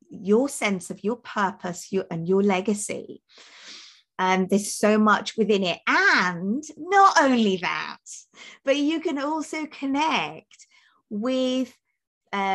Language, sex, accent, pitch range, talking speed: English, female, British, 190-235 Hz, 120 wpm